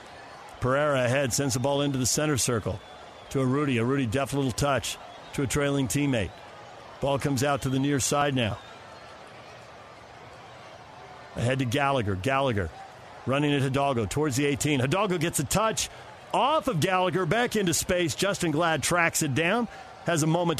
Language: English